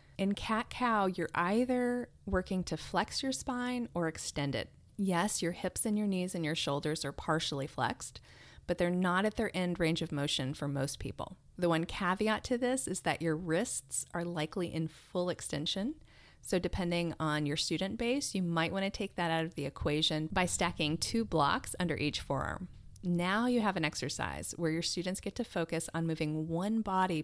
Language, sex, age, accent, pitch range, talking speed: English, female, 30-49, American, 155-205 Hz, 190 wpm